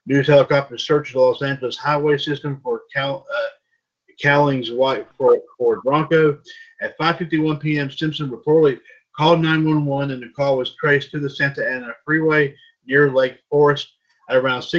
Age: 50-69